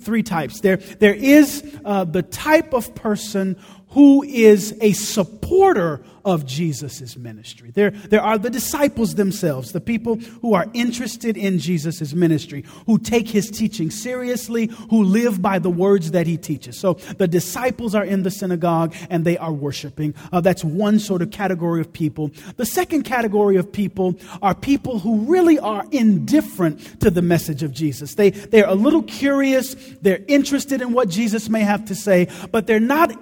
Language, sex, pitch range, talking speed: English, male, 175-235 Hz, 175 wpm